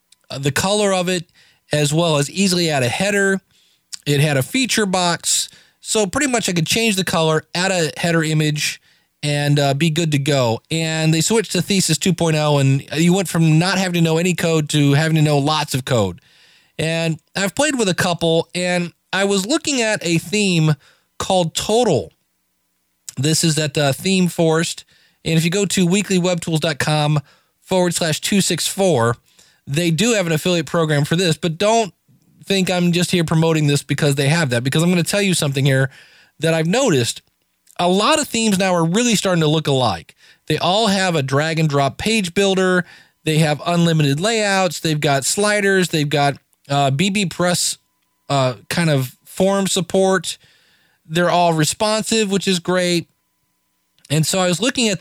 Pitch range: 150-190 Hz